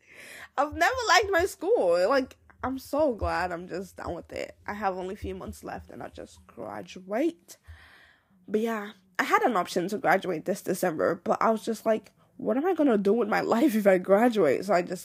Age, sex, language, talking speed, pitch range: 10-29, female, English, 220 wpm, 185-275 Hz